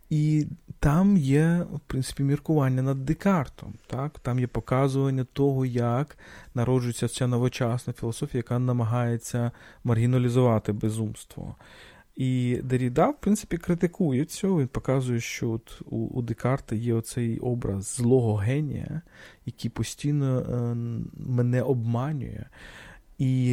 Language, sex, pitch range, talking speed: Ukrainian, male, 115-145 Hz, 110 wpm